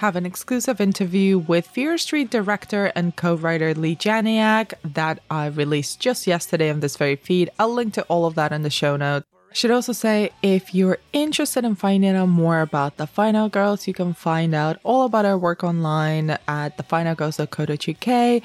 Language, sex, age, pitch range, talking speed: English, female, 20-39, 155-200 Hz, 185 wpm